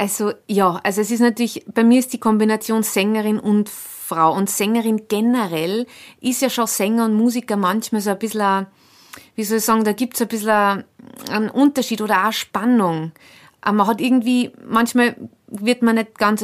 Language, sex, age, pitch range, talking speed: German, female, 30-49, 215-255 Hz, 185 wpm